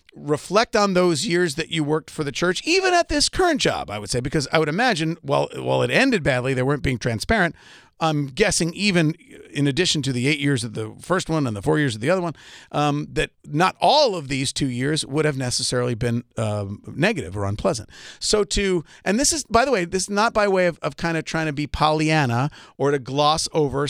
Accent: American